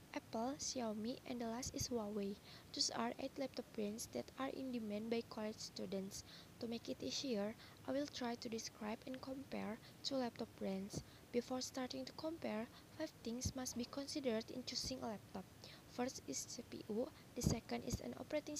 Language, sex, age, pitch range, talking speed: English, female, 20-39, 225-260 Hz, 175 wpm